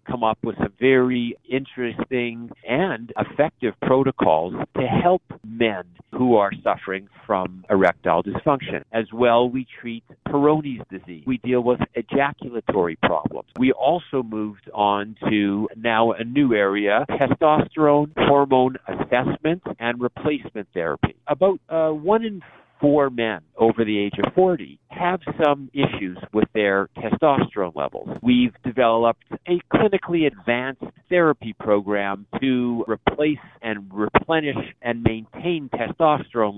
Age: 50-69